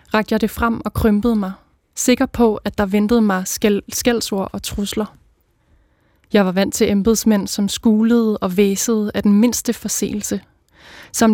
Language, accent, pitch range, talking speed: Danish, native, 200-225 Hz, 160 wpm